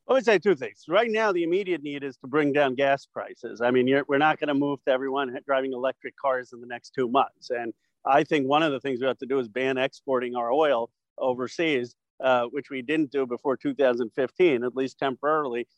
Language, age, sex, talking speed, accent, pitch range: English, 50-69, male, 230 wpm, American, 130-175 Hz